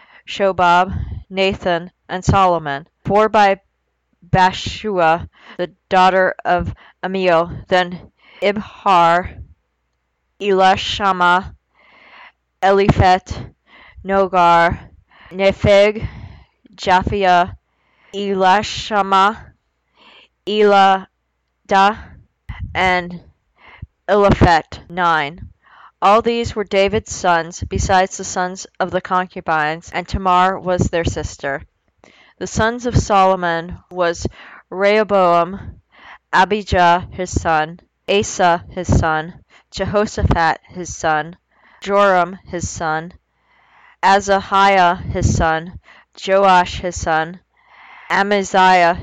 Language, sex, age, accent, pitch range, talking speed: English, female, 20-39, American, 170-195 Hz, 80 wpm